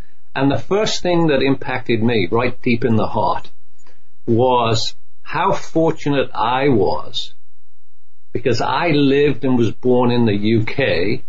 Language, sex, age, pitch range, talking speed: English, male, 50-69, 110-140 Hz, 140 wpm